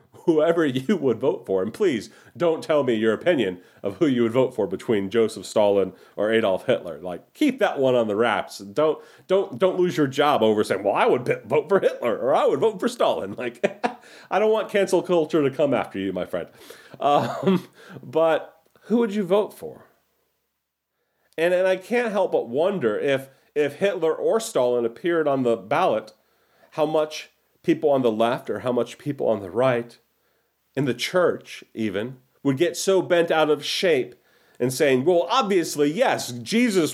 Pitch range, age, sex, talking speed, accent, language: 120-170 Hz, 40-59, male, 190 wpm, American, English